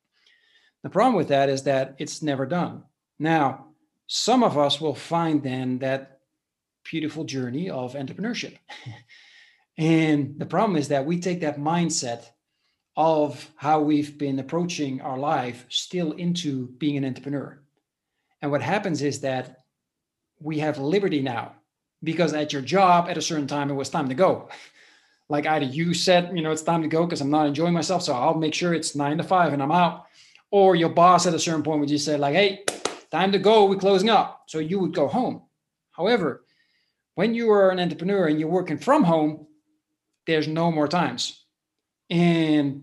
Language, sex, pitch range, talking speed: English, male, 145-170 Hz, 180 wpm